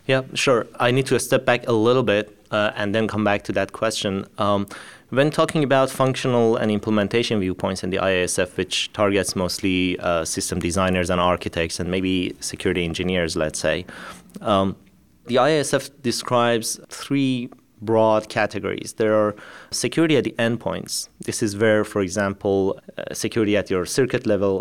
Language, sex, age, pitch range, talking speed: English, male, 30-49, 95-115 Hz, 165 wpm